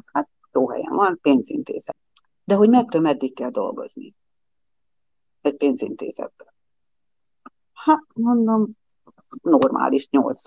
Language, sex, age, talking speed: Hungarian, female, 50-69, 85 wpm